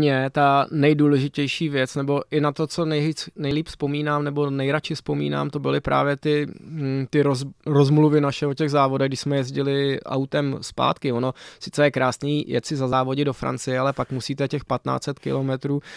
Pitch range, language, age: 125-140 Hz, Czech, 20-39